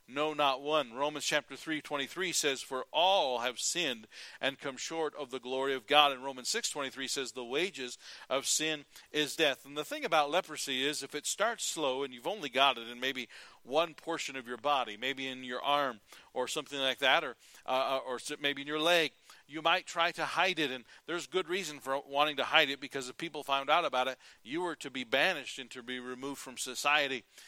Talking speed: 215 wpm